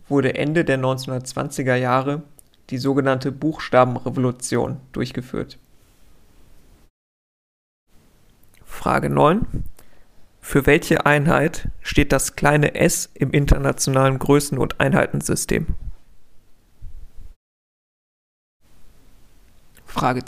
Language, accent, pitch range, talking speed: German, German, 130-145 Hz, 70 wpm